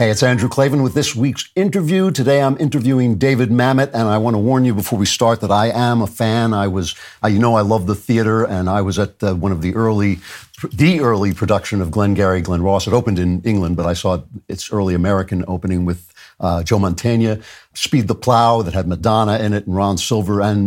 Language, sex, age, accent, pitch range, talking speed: English, male, 50-69, American, 100-125 Hz, 230 wpm